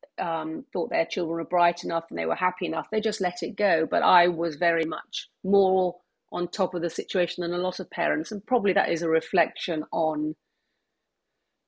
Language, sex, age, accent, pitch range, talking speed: English, female, 40-59, British, 160-190 Hz, 205 wpm